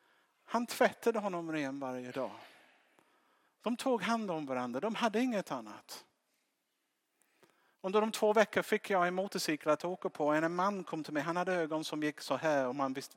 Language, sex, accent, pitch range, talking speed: Swedish, male, Norwegian, 140-190 Hz, 185 wpm